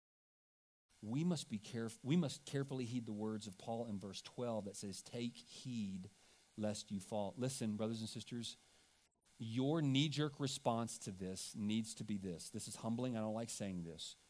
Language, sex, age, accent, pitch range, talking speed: English, male, 40-59, American, 100-135 Hz, 180 wpm